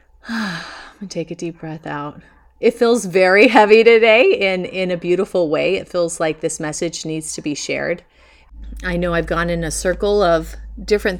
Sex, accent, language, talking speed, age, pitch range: female, American, English, 195 wpm, 30-49, 155-190 Hz